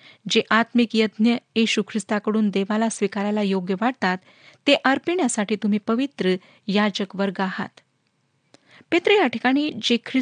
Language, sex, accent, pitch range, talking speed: Marathi, female, native, 200-265 Hz, 90 wpm